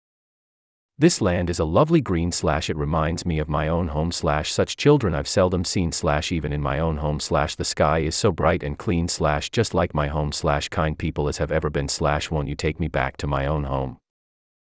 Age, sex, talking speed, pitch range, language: 30-49, male, 230 wpm, 75-110 Hz, English